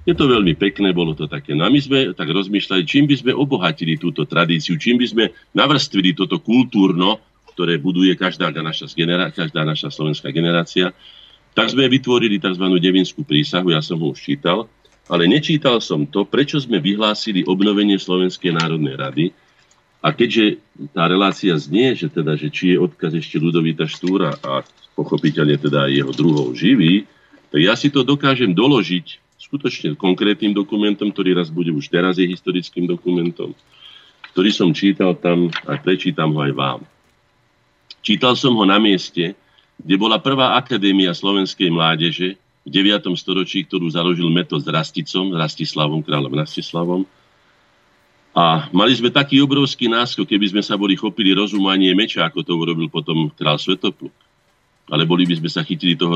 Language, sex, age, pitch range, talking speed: Slovak, male, 50-69, 85-100 Hz, 160 wpm